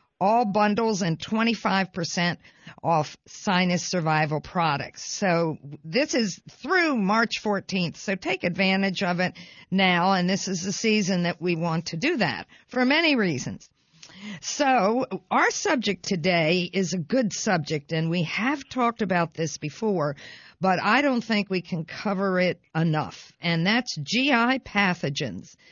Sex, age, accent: female, 50-69, American